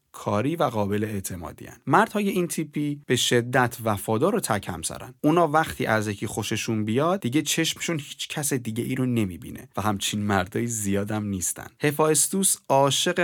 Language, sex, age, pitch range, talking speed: Persian, male, 30-49, 105-150 Hz, 160 wpm